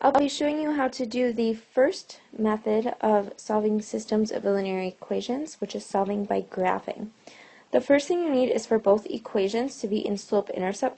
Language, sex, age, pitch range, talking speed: English, female, 20-39, 205-250 Hz, 185 wpm